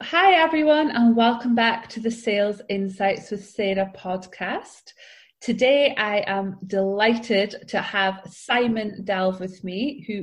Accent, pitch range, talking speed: British, 190-235 Hz, 135 wpm